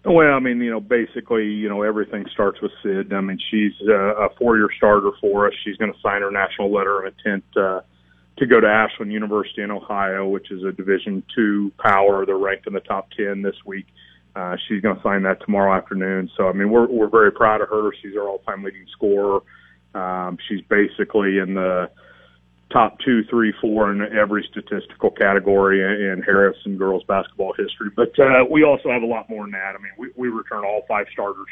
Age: 30-49